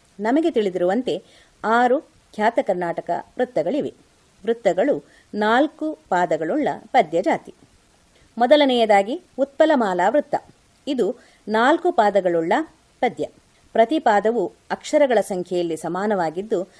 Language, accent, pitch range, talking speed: Kannada, native, 190-270 Hz, 80 wpm